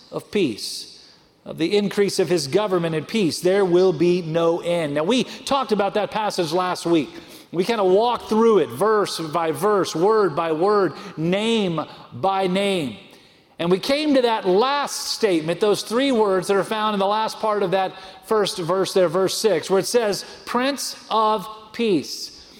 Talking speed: 180 wpm